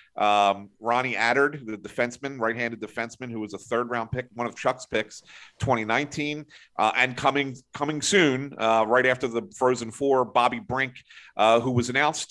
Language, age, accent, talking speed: English, 40-59, American, 170 wpm